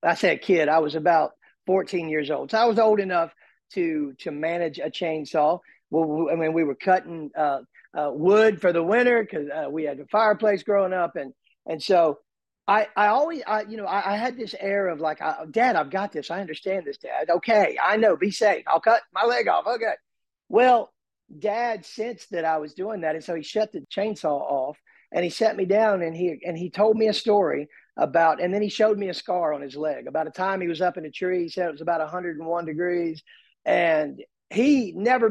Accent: American